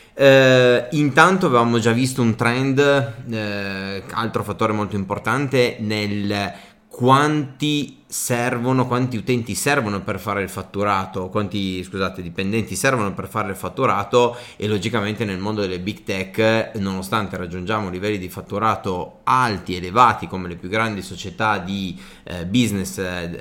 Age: 30-49